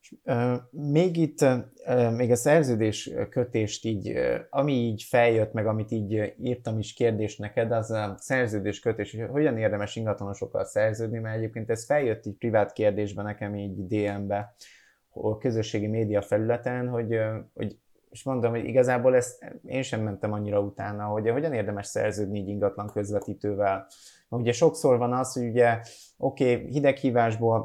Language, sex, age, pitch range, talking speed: Hungarian, male, 20-39, 105-125 Hz, 140 wpm